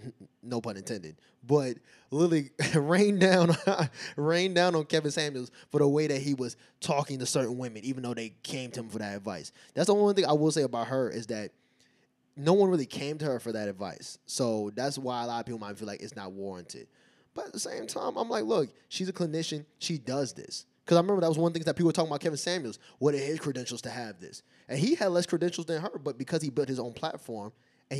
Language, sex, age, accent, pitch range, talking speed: English, male, 20-39, American, 120-155 Hz, 240 wpm